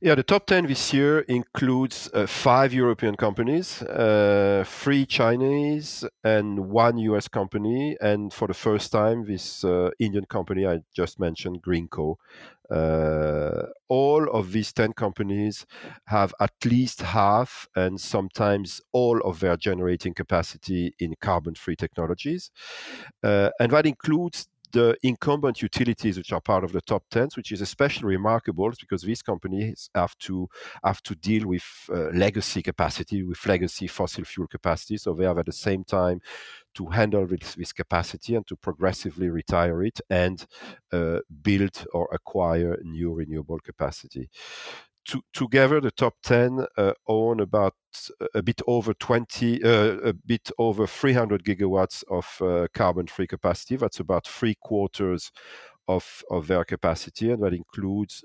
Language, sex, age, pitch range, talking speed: English, male, 40-59, 90-115 Hz, 150 wpm